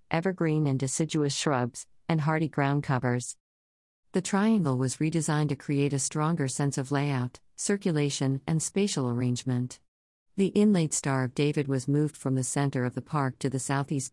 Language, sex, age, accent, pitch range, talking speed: English, female, 50-69, American, 130-160 Hz, 165 wpm